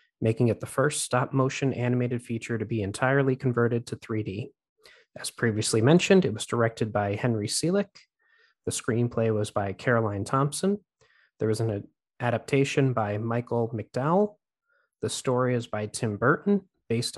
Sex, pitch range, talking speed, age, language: male, 115-170 Hz, 145 wpm, 20-39, English